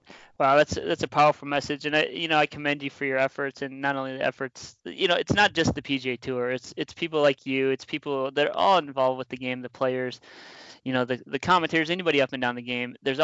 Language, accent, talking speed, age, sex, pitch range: English, American, 260 wpm, 20-39, male, 125-145 Hz